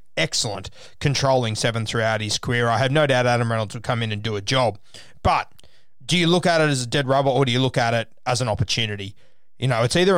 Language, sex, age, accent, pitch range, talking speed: English, male, 20-39, Australian, 115-145 Hz, 250 wpm